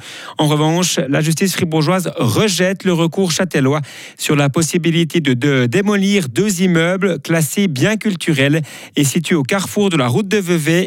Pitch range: 130-175 Hz